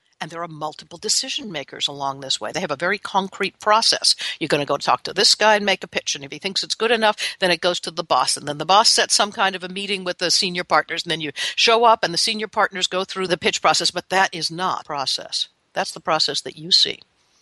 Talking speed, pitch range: 270 wpm, 155-210 Hz